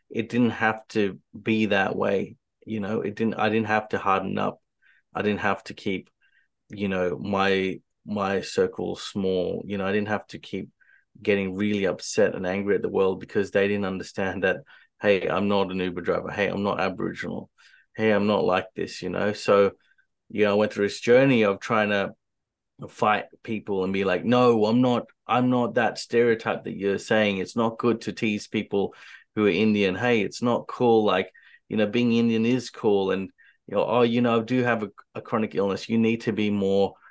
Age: 30-49